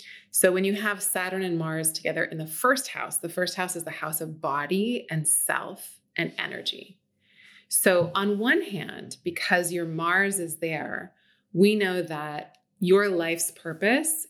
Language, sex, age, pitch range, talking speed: English, female, 30-49, 165-195 Hz, 165 wpm